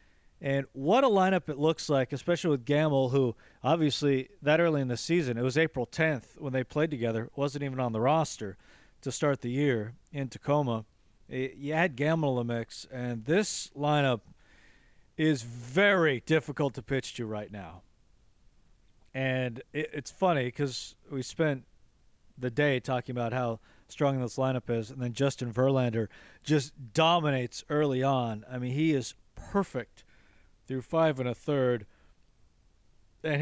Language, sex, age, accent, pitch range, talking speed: English, male, 40-59, American, 120-150 Hz, 160 wpm